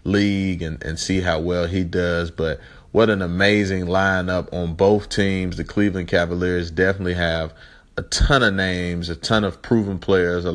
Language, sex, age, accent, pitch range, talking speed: English, male, 30-49, American, 85-100 Hz, 175 wpm